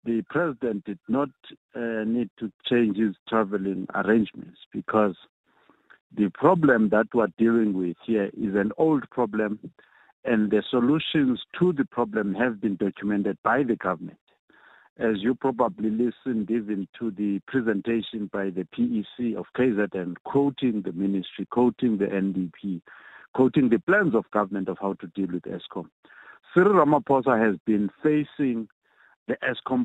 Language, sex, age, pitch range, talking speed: English, male, 50-69, 100-125 Hz, 145 wpm